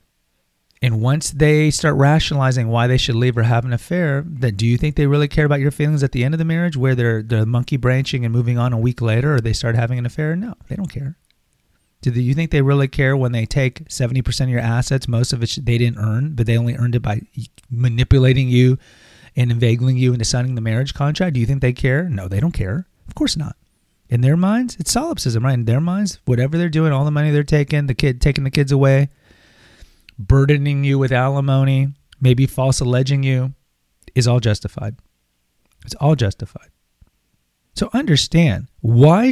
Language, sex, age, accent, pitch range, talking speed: English, male, 30-49, American, 115-145 Hz, 210 wpm